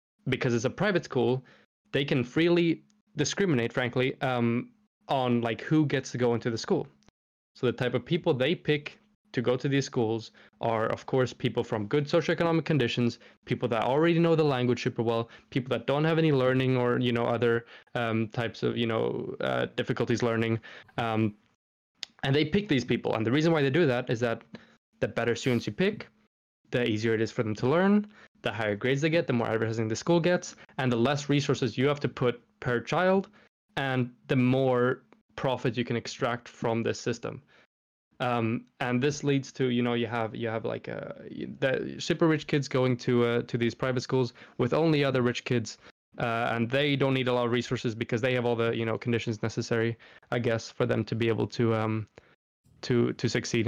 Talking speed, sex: 205 wpm, male